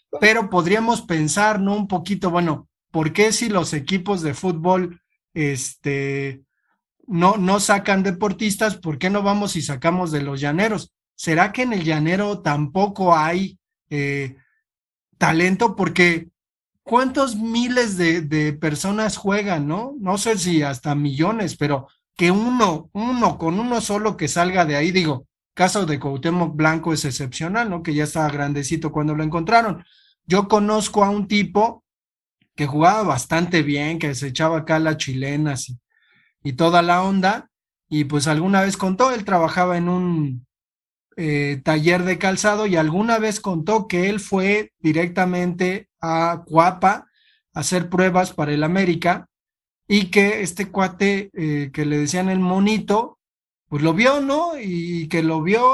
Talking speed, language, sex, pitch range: 155 wpm, Spanish, male, 155-205 Hz